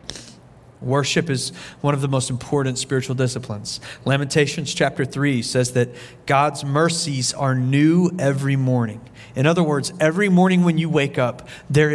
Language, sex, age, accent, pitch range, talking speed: English, male, 40-59, American, 125-150 Hz, 150 wpm